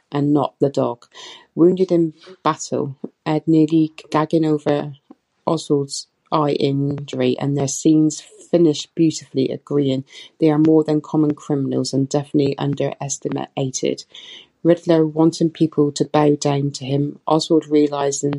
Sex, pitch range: female, 140-155 Hz